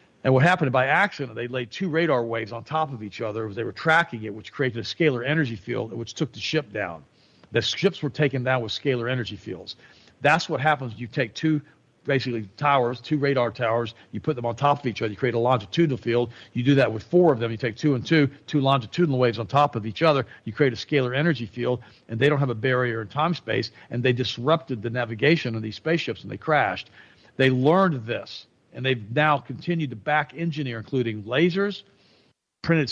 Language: English